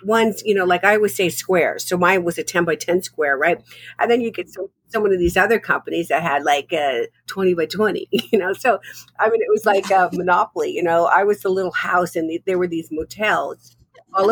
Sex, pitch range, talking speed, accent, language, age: female, 175-235 Hz, 235 wpm, American, English, 50-69